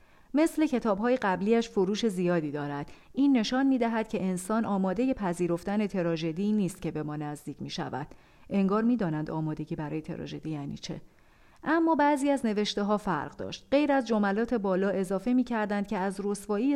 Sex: female